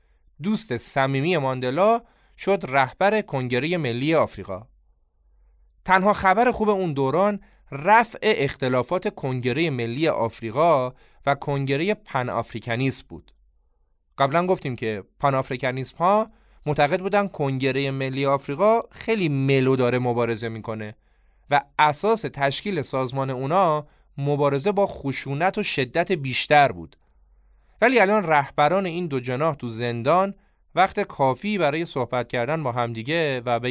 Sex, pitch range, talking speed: male, 115-160 Hz, 115 wpm